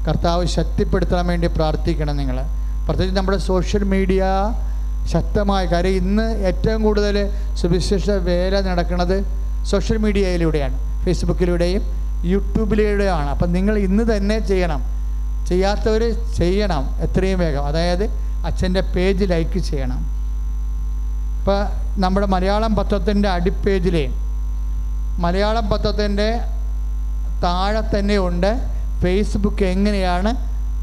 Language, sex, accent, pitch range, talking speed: English, male, Indian, 165-205 Hz, 85 wpm